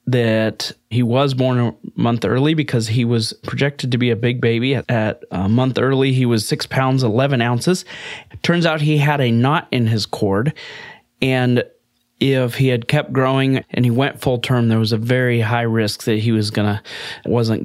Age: 30-49